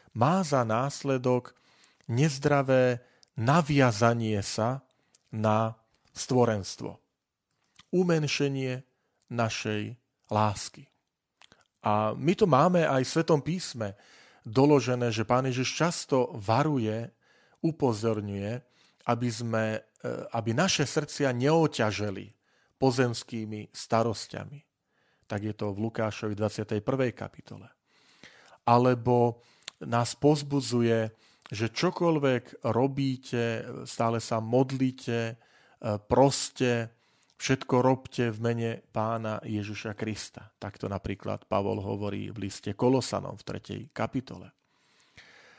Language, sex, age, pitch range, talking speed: Slovak, male, 40-59, 110-135 Hz, 90 wpm